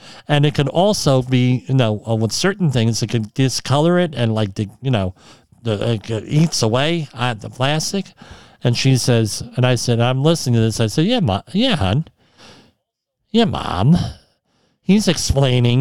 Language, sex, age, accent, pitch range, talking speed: English, male, 50-69, American, 115-150 Hz, 180 wpm